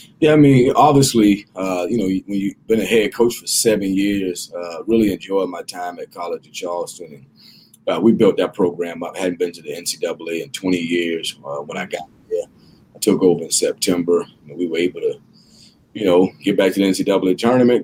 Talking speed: 210 wpm